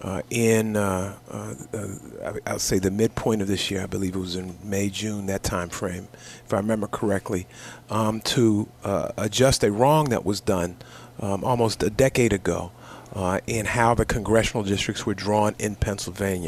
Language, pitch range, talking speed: English, 100-120 Hz, 180 wpm